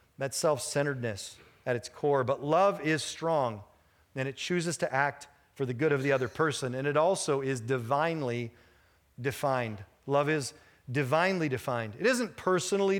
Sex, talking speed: male, 155 wpm